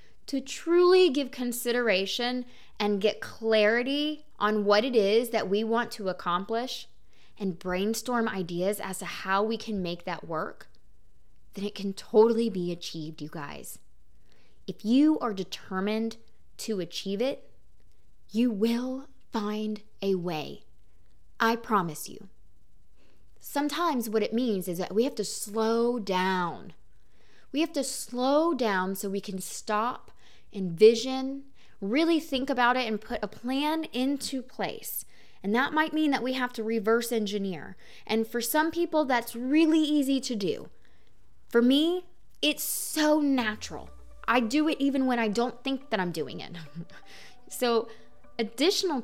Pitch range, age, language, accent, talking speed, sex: 200-270 Hz, 20-39, English, American, 145 wpm, female